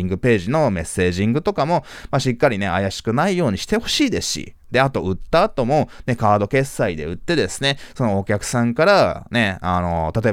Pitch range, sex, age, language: 95-135 Hz, male, 20-39, Japanese